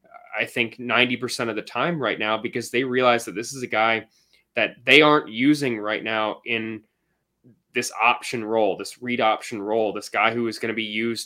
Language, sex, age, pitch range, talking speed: English, male, 20-39, 110-125 Hz, 205 wpm